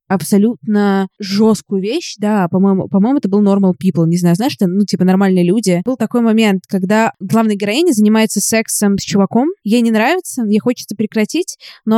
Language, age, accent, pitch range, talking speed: Russian, 20-39, native, 190-225 Hz, 175 wpm